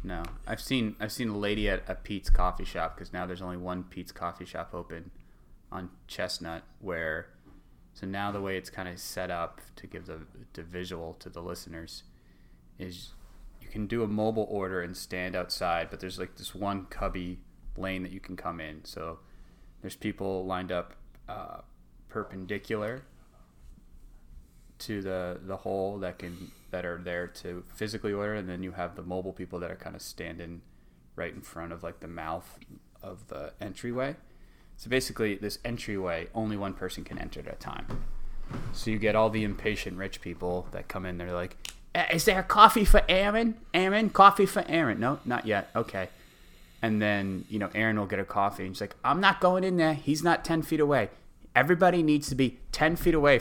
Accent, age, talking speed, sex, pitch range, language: American, 20-39, 195 wpm, male, 85-110 Hz, English